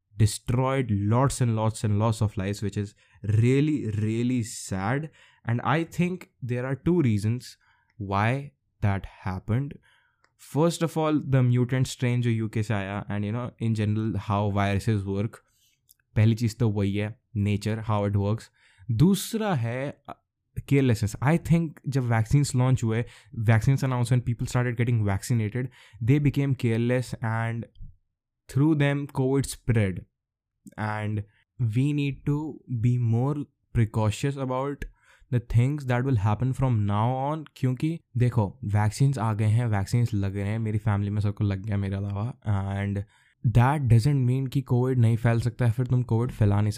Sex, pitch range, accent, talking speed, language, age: male, 105-130 Hz, native, 160 wpm, Hindi, 20-39